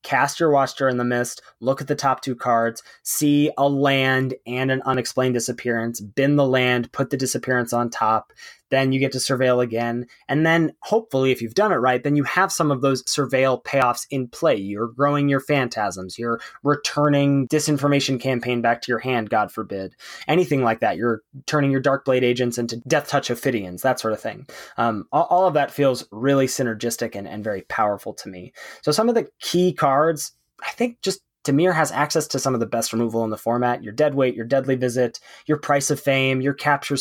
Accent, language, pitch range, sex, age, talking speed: American, English, 120-145 Hz, male, 20-39, 205 wpm